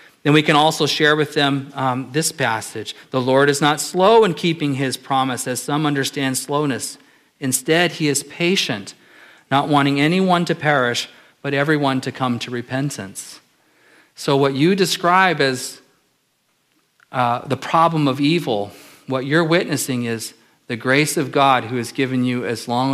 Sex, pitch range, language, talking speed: male, 125-160 Hz, English, 160 wpm